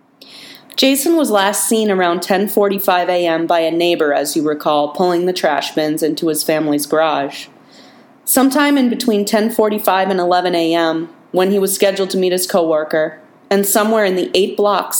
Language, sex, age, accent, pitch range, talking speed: English, female, 30-49, American, 165-205 Hz, 170 wpm